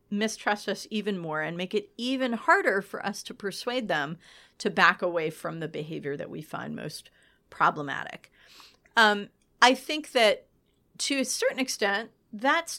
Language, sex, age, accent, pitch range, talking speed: English, female, 40-59, American, 165-215 Hz, 160 wpm